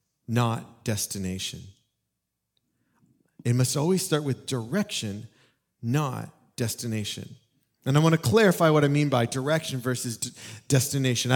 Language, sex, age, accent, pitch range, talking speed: English, male, 40-59, American, 115-145 Hz, 120 wpm